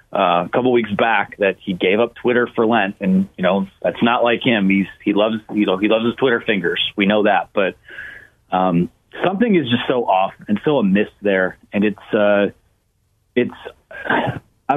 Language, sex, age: English, male, 30-49